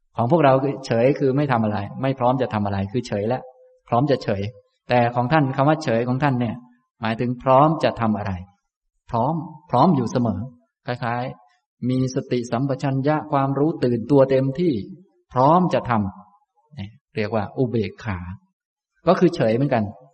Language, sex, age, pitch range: Thai, male, 20-39, 110-140 Hz